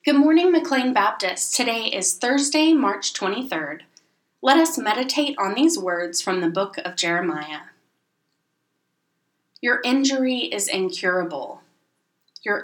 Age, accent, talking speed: 20-39, American, 120 wpm